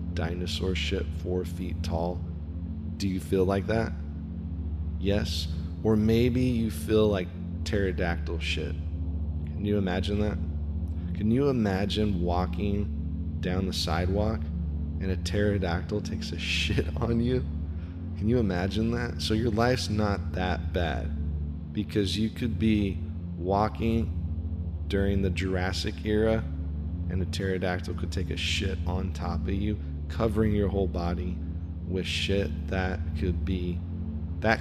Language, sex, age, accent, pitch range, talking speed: English, male, 20-39, American, 80-95 Hz, 135 wpm